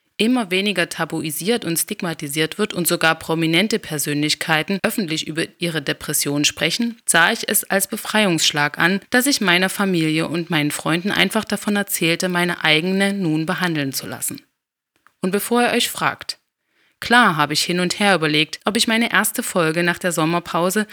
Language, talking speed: German, 165 wpm